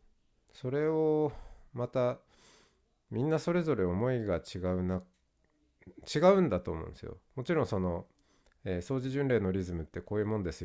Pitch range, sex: 85-130 Hz, male